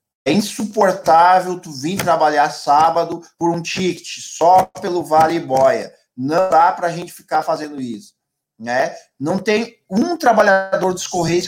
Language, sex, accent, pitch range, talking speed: Portuguese, male, Brazilian, 150-195 Hz, 145 wpm